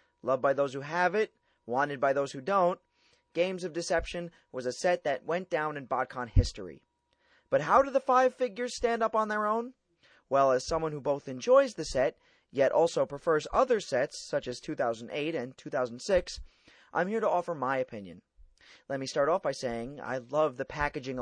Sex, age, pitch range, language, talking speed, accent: male, 30-49, 125-175 Hz, English, 190 wpm, American